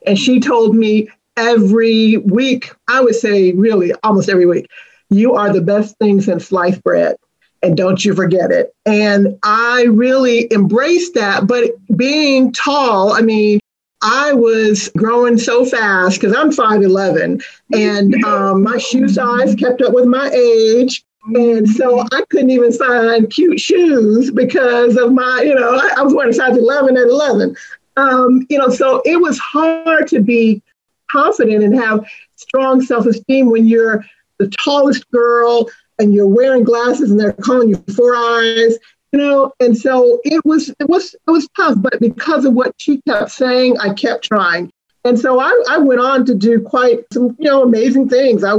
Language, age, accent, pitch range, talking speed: English, 50-69, American, 215-260 Hz, 175 wpm